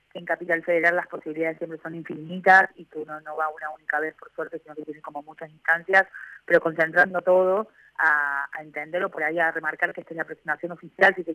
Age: 30-49